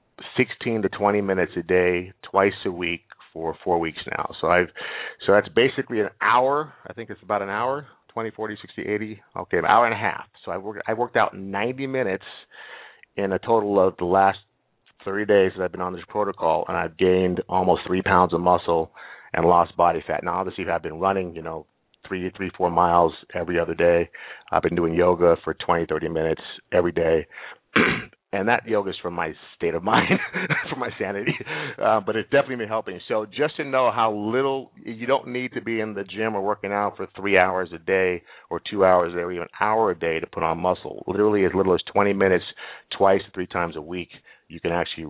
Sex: male